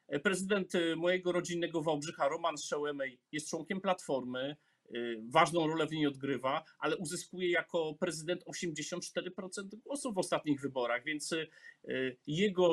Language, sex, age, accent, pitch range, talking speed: Polish, male, 40-59, native, 150-180 Hz, 120 wpm